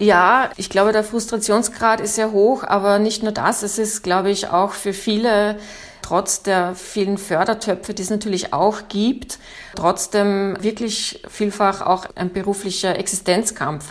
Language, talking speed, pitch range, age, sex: German, 150 wpm, 185-210 Hz, 30-49, female